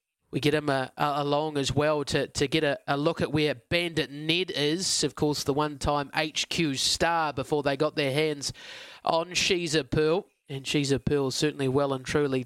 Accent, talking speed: Australian, 200 wpm